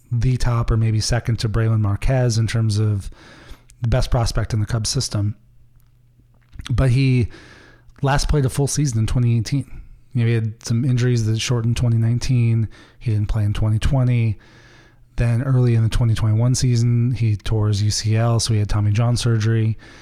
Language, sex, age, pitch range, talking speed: English, male, 30-49, 110-125 Hz, 170 wpm